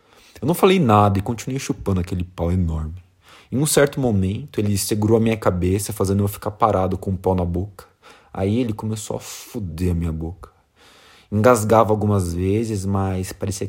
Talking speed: 180 wpm